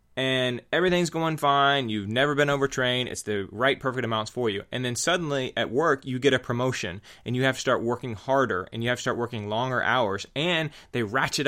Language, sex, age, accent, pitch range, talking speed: English, male, 30-49, American, 110-140 Hz, 220 wpm